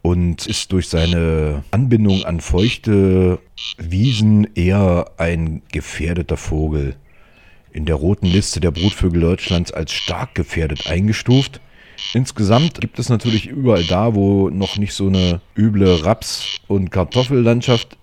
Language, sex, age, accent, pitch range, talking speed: German, male, 40-59, German, 85-115 Hz, 125 wpm